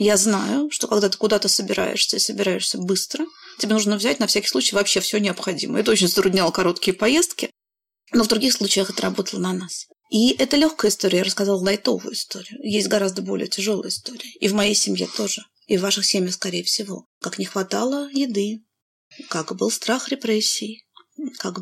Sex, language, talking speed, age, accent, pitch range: female, Russian, 180 wpm, 30-49, native, 200-255 Hz